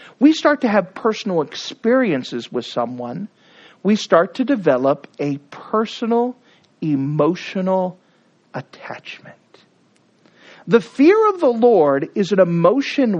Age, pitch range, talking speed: 40-59, 175-280 Hz, 110 wpm